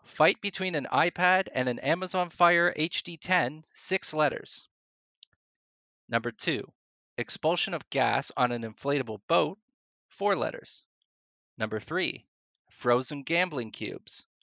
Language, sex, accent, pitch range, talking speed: English, male, American, 120-180 Hz, 115 wpm